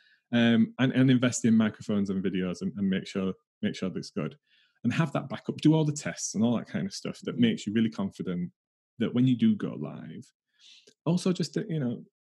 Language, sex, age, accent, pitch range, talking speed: English, male, 20-39, British, 115-145 Hz, 220 wpm